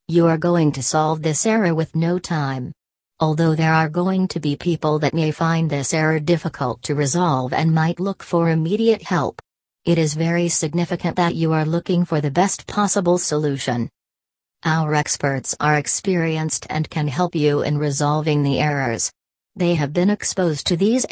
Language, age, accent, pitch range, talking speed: English, 40-59, American, 150-175 Hz, 175 wpm